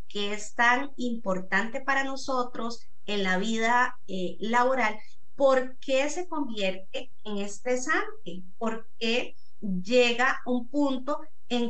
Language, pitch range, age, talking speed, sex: Spanish, 195-250 Hz, 30-49, 120 wpm, female